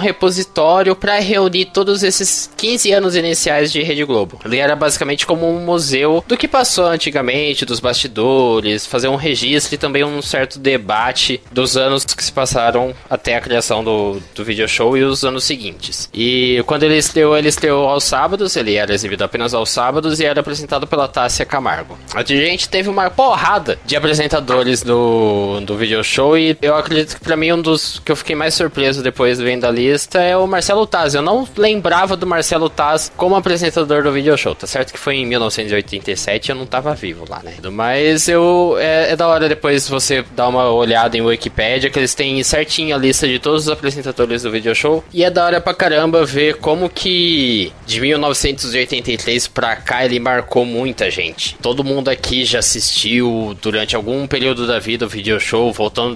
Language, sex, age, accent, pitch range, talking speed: Portuguese, male, 10-29, Brazilian, 120-160 Hz, 190 wpm